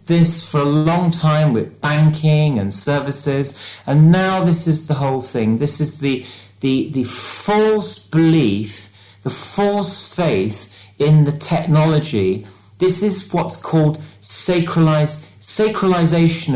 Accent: British